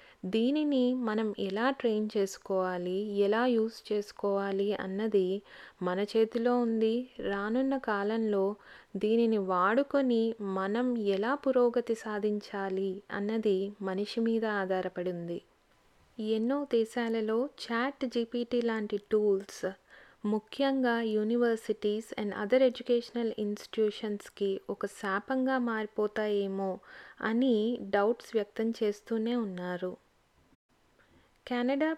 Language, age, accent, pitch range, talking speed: Telugu, 20-39, native, 205-240 Hz, 85 wpm